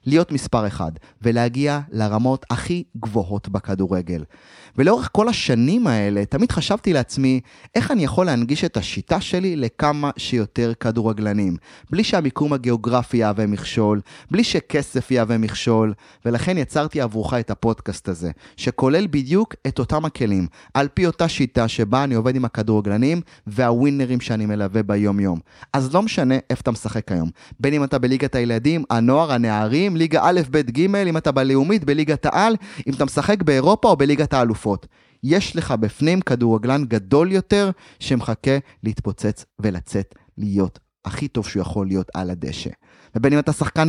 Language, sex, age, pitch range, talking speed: Hebrew, male, 30-49, 110-160 Hz, 150 wpm